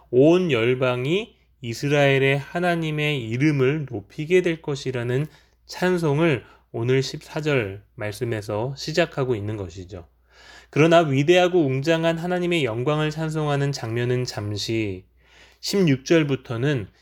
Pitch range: 110-170 Hz